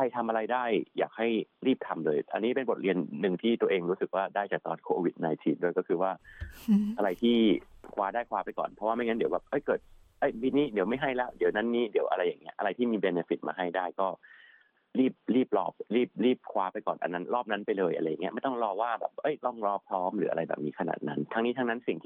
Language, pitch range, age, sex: Thai, 90-120 Hz, 30-49, male